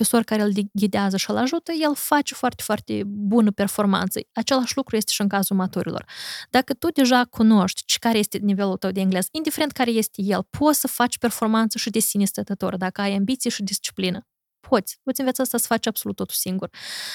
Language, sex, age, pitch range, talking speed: Romanian, female, 20-39, 195-255 Hz, 190 wpm